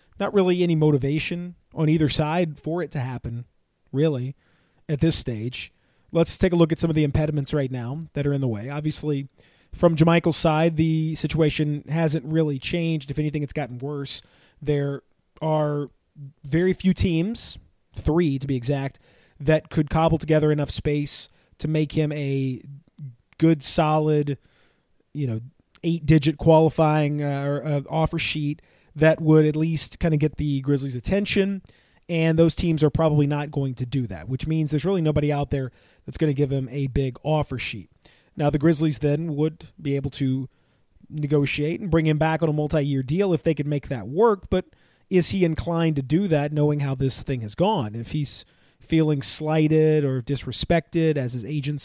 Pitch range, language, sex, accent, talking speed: 140-160 Hz, English, male, American, 180 wpm